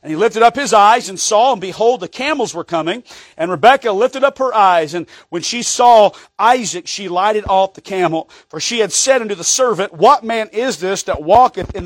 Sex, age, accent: male, 40-59, American